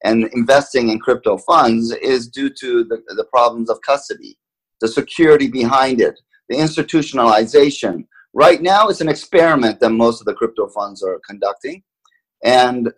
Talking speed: 155 wpm